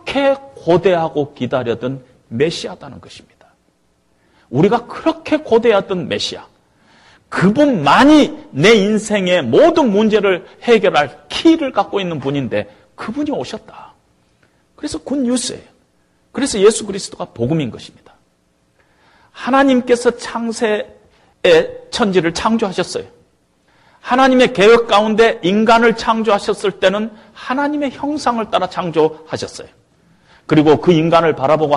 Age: 40-59